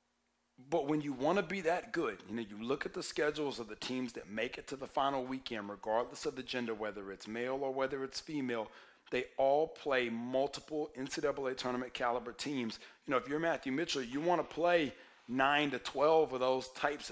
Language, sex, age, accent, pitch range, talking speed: English, male, 30-49, American, 125-140 Hz, 210 wpm